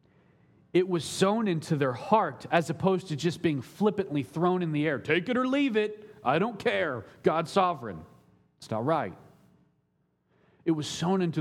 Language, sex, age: English, male, 40-59